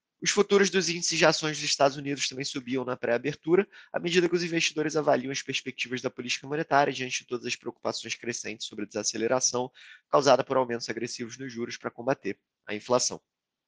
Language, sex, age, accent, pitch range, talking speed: Portuguese, male, 20-39, Brazilian, 120-145 Hz, 190 wpm